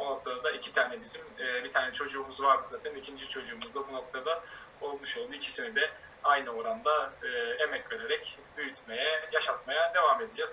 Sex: male